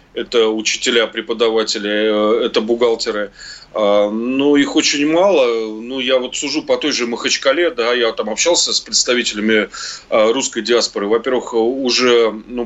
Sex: male